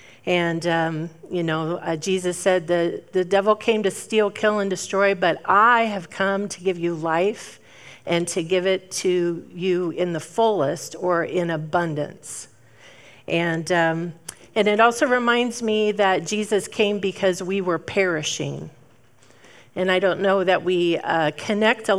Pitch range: 165-195 Hz